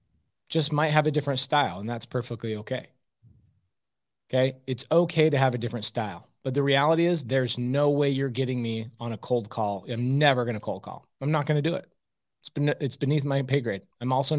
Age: 30-49